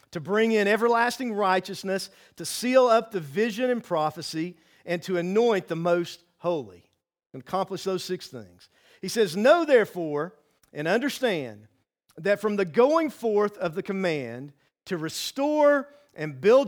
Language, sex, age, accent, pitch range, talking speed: English, male, 50-69, American, 155-210 Hz, 150 wpm